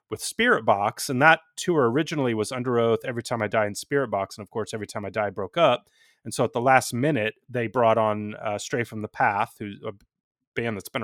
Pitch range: 105-135 Hz